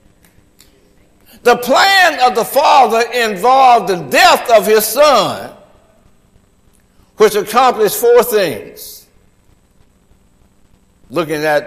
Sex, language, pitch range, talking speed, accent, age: male, English, 195-305 Hz, 85 wpm, American, 60-79